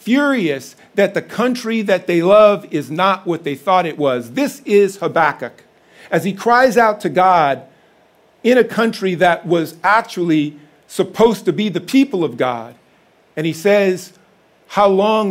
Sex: male